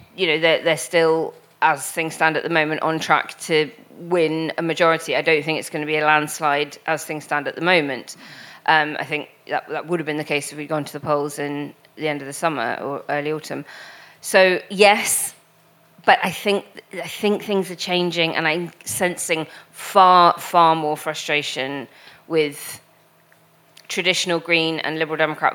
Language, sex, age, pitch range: English, female, 20-39, 150-170 Hz